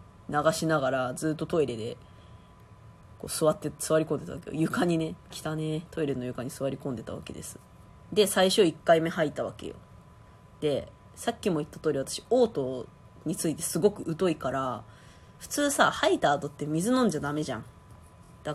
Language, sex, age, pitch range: Japanese, female, 20-39, 135-205 Hz